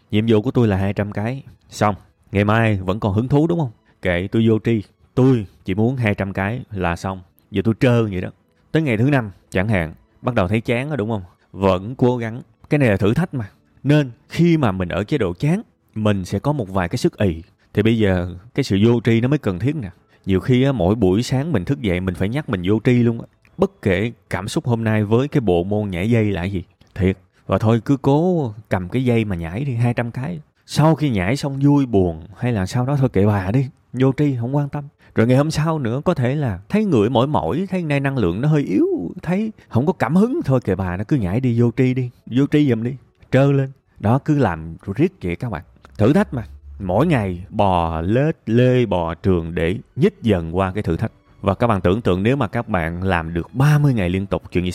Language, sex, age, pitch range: Vietnamese, male, 20-39, 95-135 Hz